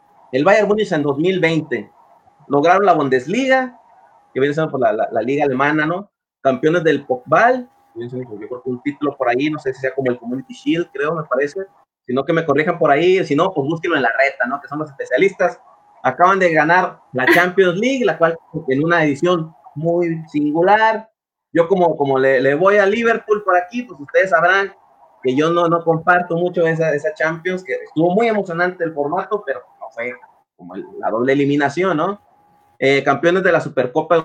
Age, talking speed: 30-49, 195 wpm